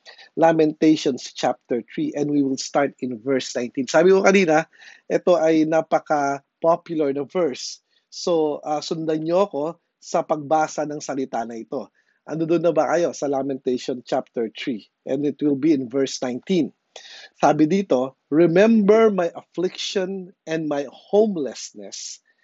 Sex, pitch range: male, 140-180 Hz